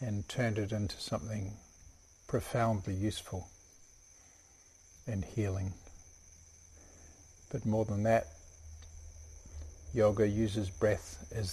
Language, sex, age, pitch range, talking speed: English, male, 50-69, 85-110 Hz, 90 wpm